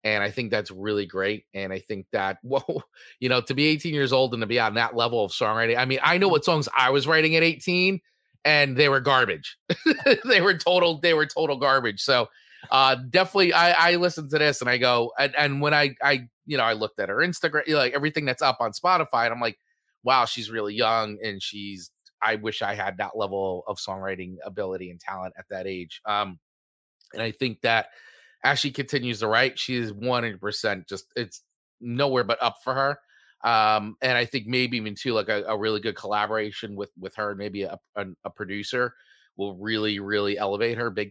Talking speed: 210 wpm